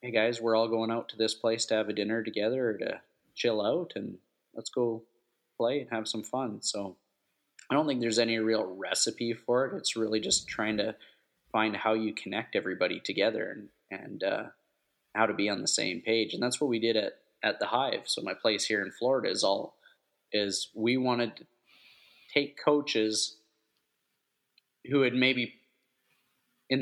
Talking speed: 190 wpm